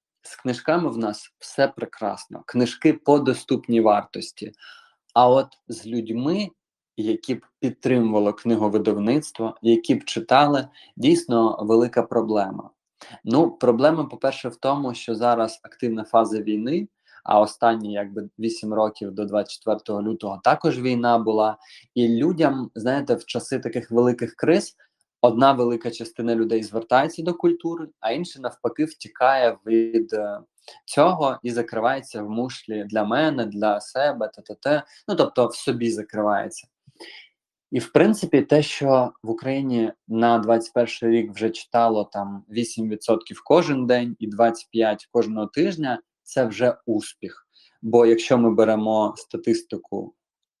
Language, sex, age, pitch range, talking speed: Ukrainian, male, 20-39, 110-125 Hz, 130 wpm